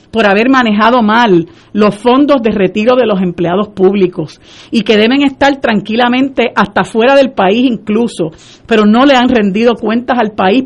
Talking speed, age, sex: 170 wpm, 50-69, female